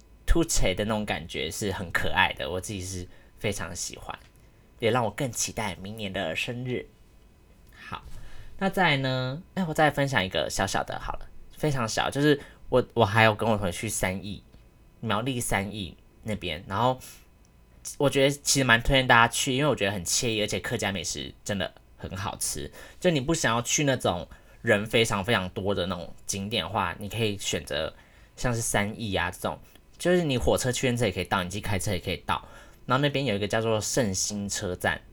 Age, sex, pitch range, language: 20-39, male, 95-125 Hz, Chinese